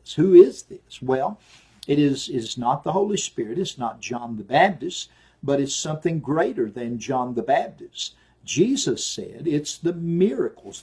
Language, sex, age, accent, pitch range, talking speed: English, male, 50-69, American, 125-175 Hz, 155 wpm